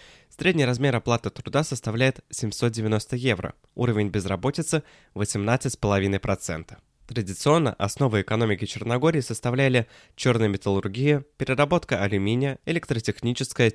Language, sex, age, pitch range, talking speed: Russian, male, 20-39, 105-130 Hz, 85 wpm